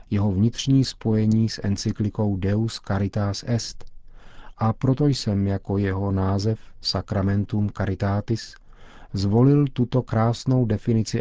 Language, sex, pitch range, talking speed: Czech, male, 100-115 Hz, 105 wpm